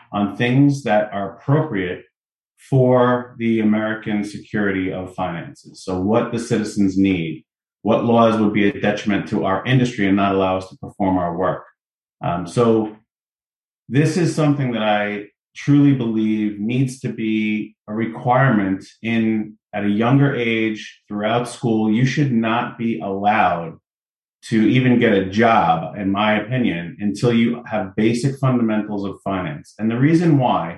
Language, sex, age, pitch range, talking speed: English, male, 30-49, 105-125 Hz, 150 wpm